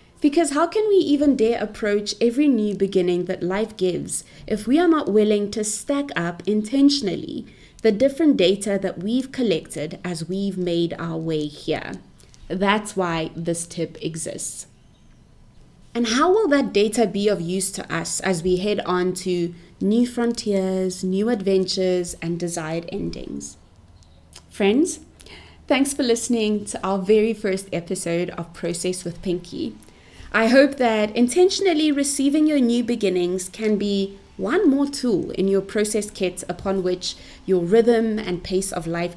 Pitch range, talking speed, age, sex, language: 180-245 Hz, 150 wpm, 20-39, female, English